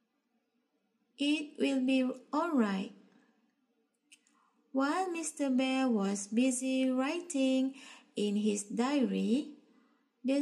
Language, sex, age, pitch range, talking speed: English, female, 20-39, 235-280 Hz, 85 wpm